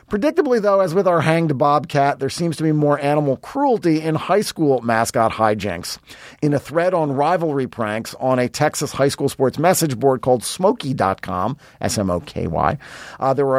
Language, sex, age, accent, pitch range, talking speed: English, male, 40-59, American, 135-170 Hz, 170 wpm